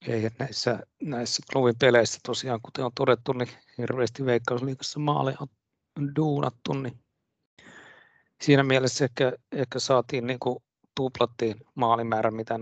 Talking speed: 115 wpm